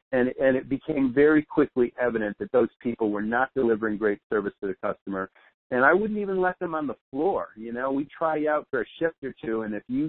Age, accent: 50-69, American